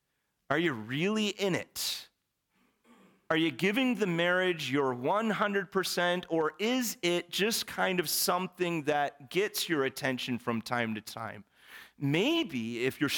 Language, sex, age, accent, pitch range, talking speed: English, male, 40-59, American, 120-180 Hz, 135 wpm